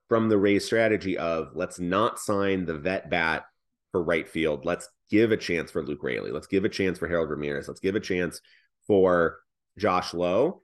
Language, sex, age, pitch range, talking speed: English, male, 30-49, 95-125 Hz, 195 wpm